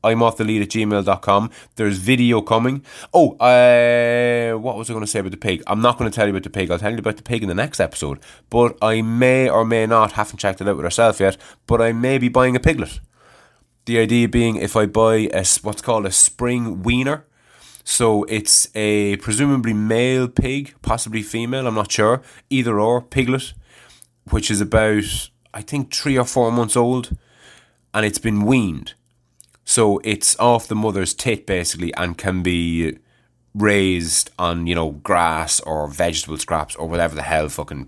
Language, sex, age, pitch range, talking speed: English, male, 20-39, 95-120 Hz, 190 wpm